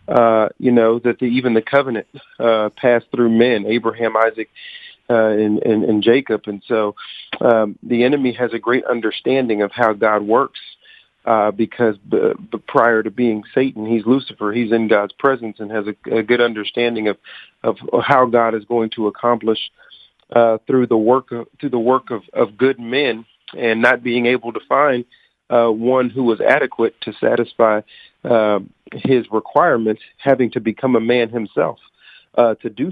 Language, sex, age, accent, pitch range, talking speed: English, male, 40-59, American, 110-125 Hz, 175 wpm